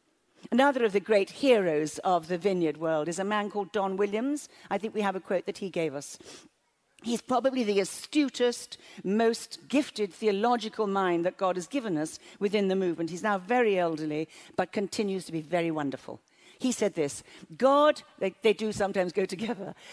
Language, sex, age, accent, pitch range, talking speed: English, female, 50-69, British, 190-270 Hz, 185 wpm